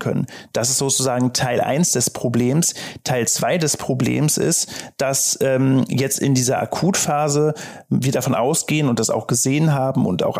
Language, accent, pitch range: German, German, 125-150 Hz